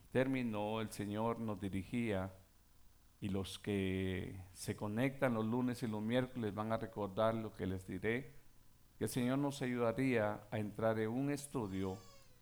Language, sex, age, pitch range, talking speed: Spanish, male, 50-69, 95-135 Hz, 155 wpm